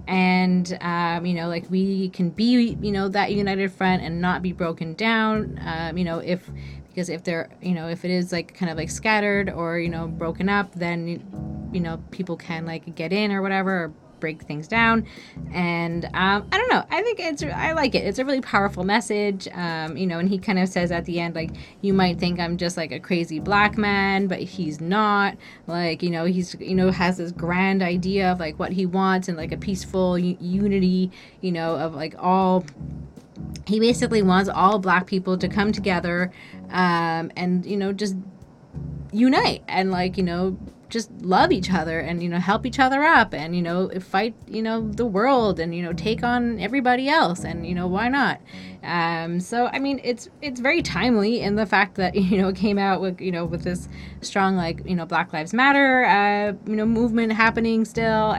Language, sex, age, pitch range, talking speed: English, female, 20-39, 170-210 Hz, 210 wpm